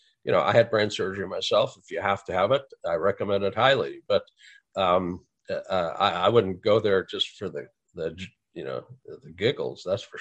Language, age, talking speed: English, 50-69, 205 wpm